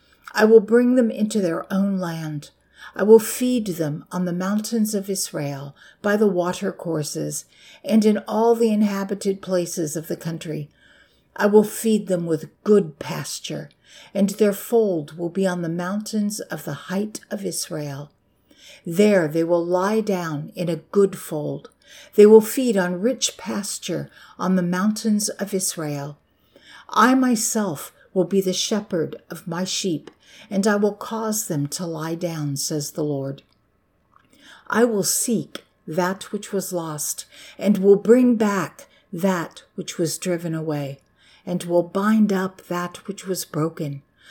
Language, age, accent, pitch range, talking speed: English, 60-79, American, 160-210 Hz, 155 wpm